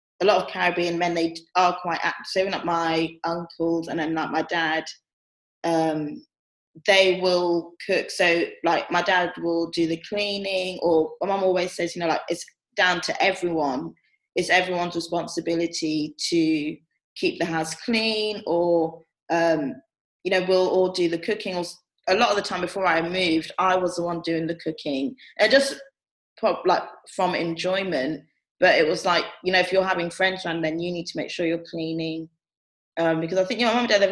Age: 20-39